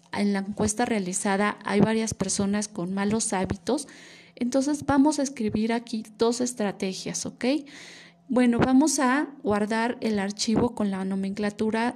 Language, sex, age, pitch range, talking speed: Spanish, female, 20-39, 205-245 Hz, 135 wpm